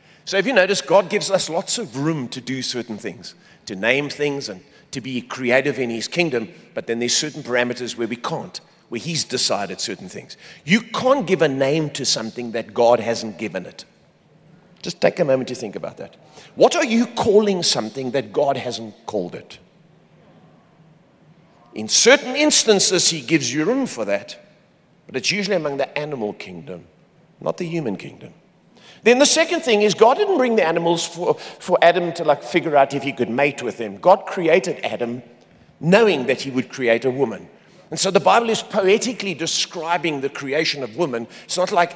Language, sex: English, male